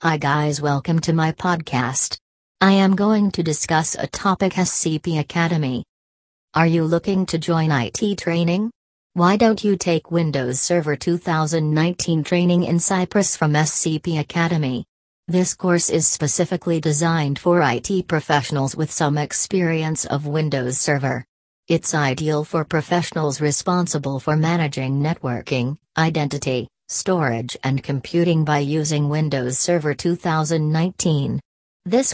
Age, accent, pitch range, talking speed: 40-59, American, 145-175 Hz, 125 wpm